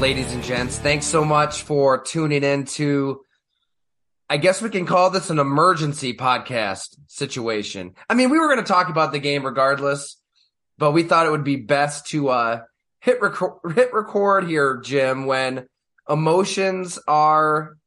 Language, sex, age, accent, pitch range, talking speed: English, male, 20-39, American, 115-150 Hz, 160 wpm